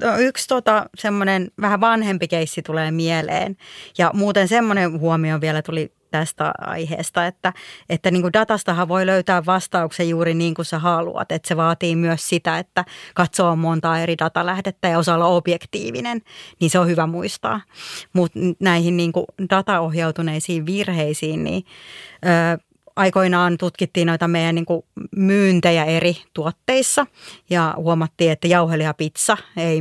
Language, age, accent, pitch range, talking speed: Finnish, 30-49, native, 165-190 Hz, 135 wpm